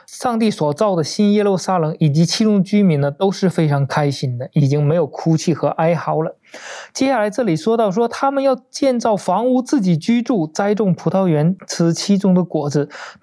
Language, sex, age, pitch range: Chinese, male, 20-39, 145-195 Hz